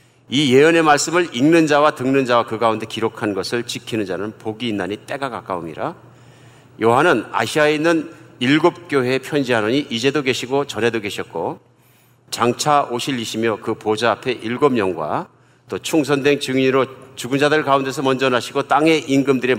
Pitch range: 110-140 Hz